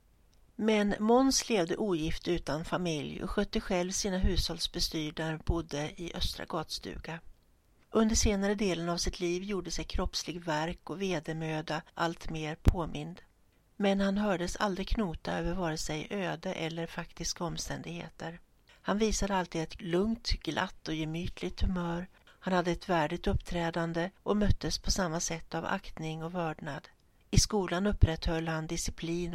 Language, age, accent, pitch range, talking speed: Swedish, 60-79, native, 160-185 Hz, 145 wpm